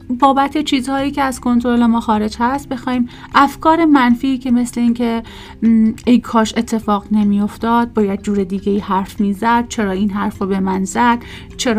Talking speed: 165 wpm